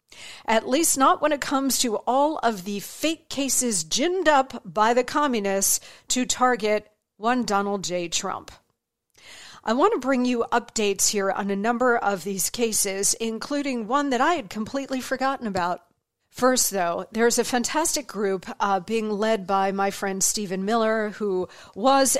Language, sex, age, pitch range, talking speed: English, female, 50-69, 200-265 Hz, 160 wpm